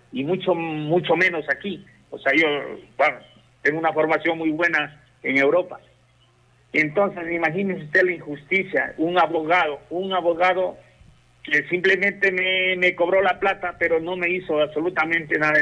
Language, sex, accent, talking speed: Spanish, male, Mexican, 145 wpm